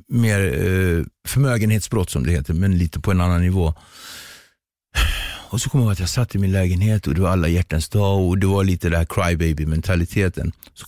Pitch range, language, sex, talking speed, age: 85-115 Hz, Swedish, male, 200 wpm, 60-79